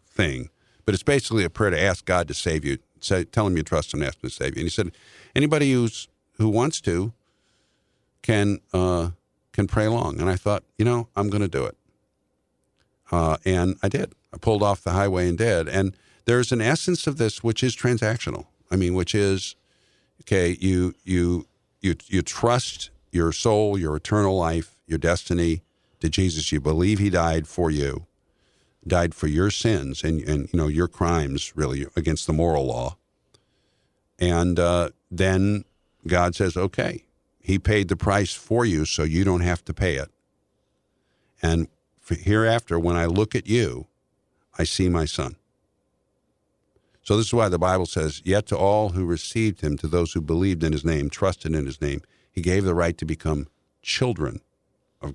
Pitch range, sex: 80-105 Hz, male